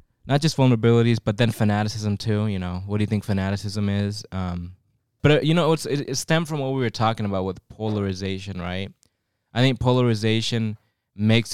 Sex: male